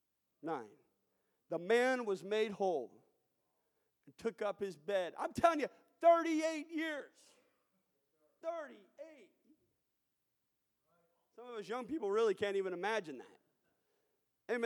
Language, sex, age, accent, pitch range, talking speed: English, male, 40-59, American, 180-255 Hz, 115 wpm